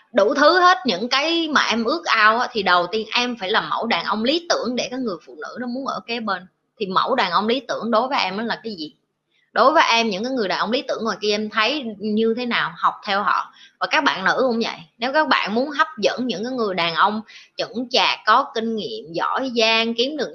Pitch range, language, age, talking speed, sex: 210-255 Hz, Vietnamese, 20-39, 265 wpm, female